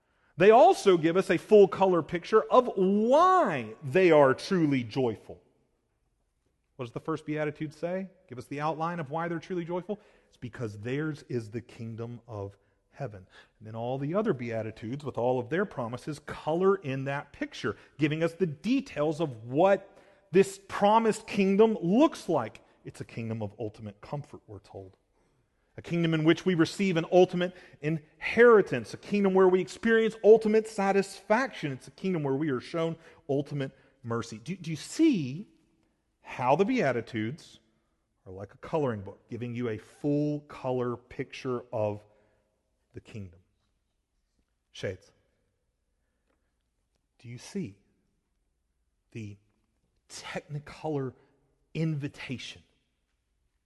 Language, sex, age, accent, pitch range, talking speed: English, male, 40-59, American, 115-185 Hz, 140 wpm